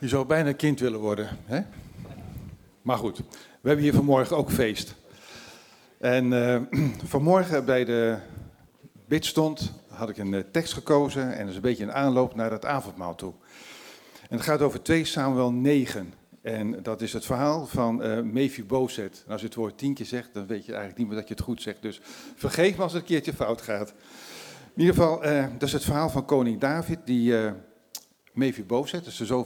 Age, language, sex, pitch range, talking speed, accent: 50-69, Dutch, male, 105-135 Hz, 205 wpm, Dutch